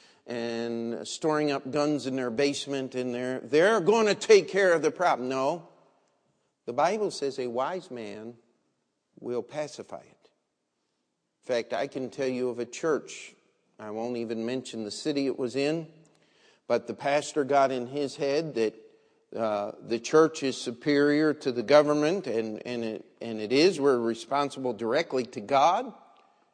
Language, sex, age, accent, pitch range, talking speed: English, male, 50-69, American, 120-155 Hz, 165 wpm